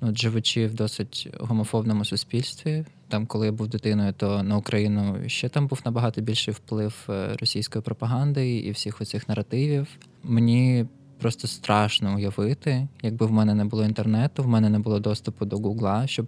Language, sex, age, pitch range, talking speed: Ukrainian, male, 20-39, 105-125 Hz, 160 wpm